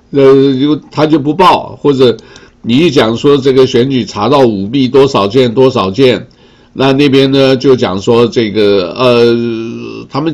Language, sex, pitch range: Chinese, male, 100-135 Hz